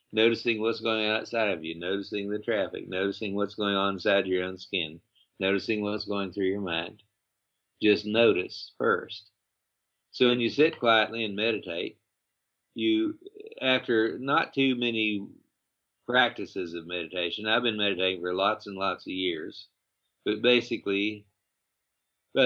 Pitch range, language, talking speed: 95-110 Hz, English, 145 wpm